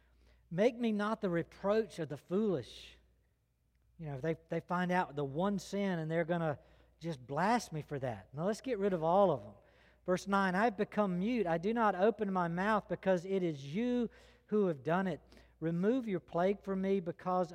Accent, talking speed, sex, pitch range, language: American, 205 wpm, male, 155-205 Hz, English